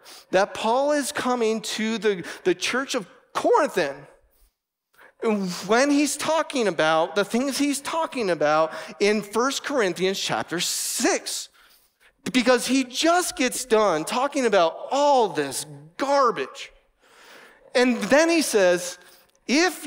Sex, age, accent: male, 30-49, American